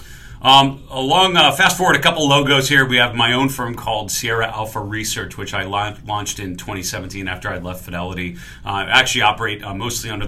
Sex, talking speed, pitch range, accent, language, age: male, 205 wpm, 95-120 Hz, American, English, 40-59